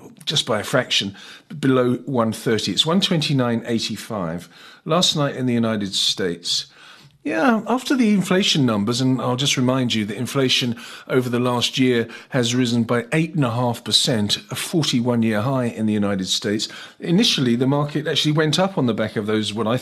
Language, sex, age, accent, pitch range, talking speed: English, male, 40-59, British, 105-140 Hz, 175 wpm